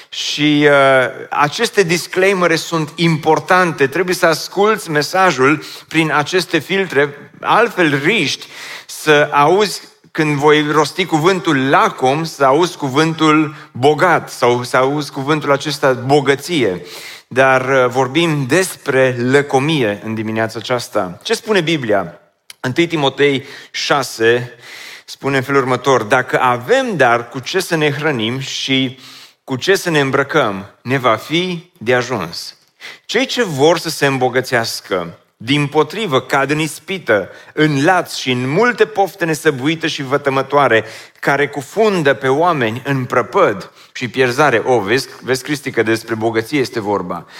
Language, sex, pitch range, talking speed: Romanian, male, 130-170 Hz, 135 wpm